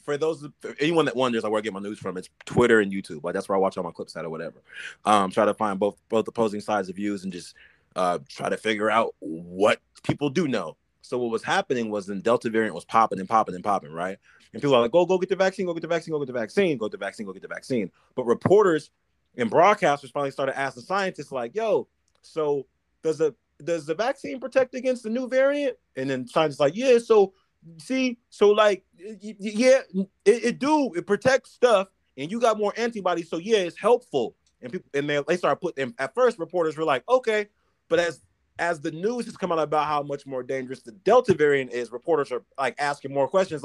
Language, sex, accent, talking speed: English, male, American, 240 wpm